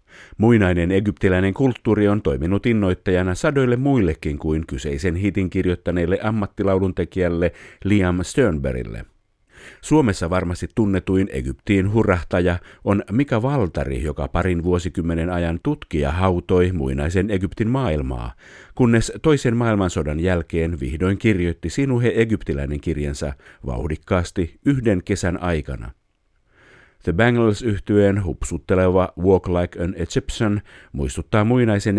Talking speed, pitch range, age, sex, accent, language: 105 wpm, 85-105 Hz, 50-69, male, native, Finnish